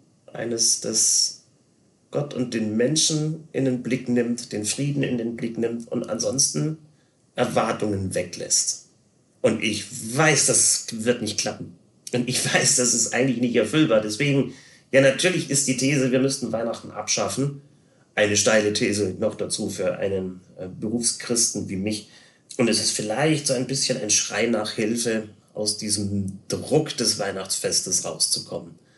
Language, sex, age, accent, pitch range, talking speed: German, male, 30-49, German, 105-130 Hz, 150 wpm